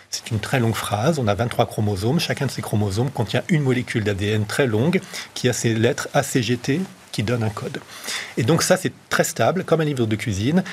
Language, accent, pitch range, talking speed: French, French, 115-165 Hz, 220 wpm